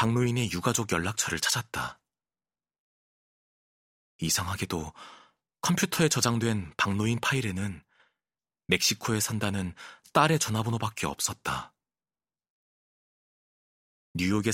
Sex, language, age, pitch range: male, Korean, 30-49, 85-115 Hz